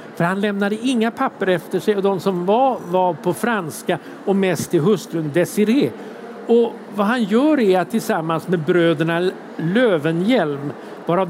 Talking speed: 160 wpm